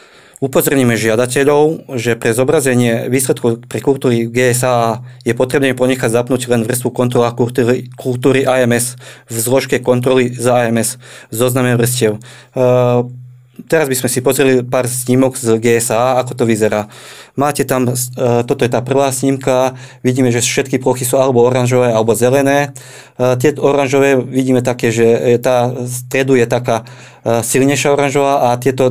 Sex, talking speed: male, 145 wpm